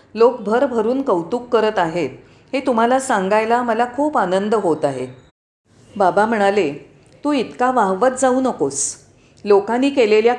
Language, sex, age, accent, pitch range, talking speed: Marathi, female, 40-59, native, 185-255 Hz, 125 wpm